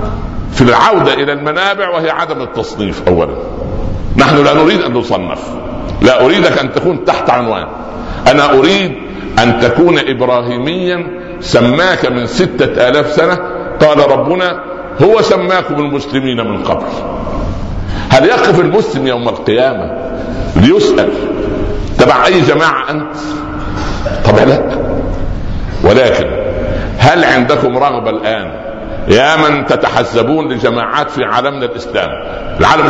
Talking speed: 110 wpm